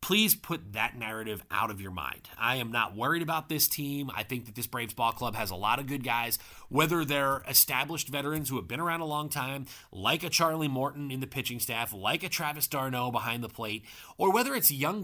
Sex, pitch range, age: male, 115-150 Hz, 30-49